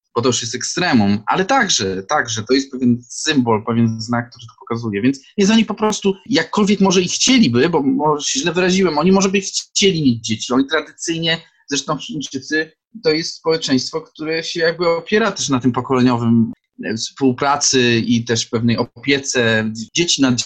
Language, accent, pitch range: Polish, native, 120-180 Hz